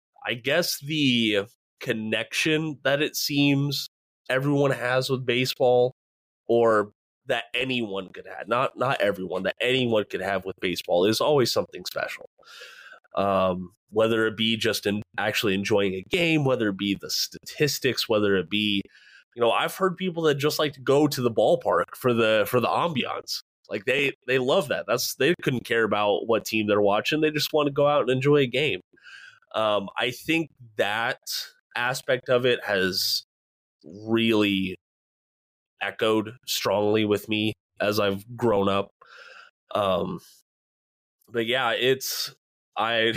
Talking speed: 155 wpm